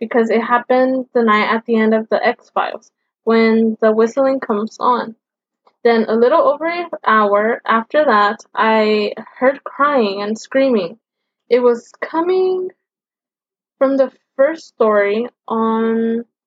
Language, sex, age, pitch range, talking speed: English, female, 10-29, 225-275 Hz, 135 wpm